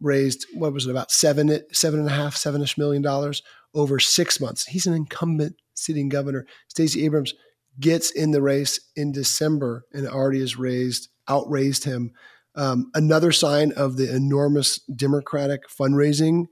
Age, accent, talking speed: 30-49, American, 155 wpm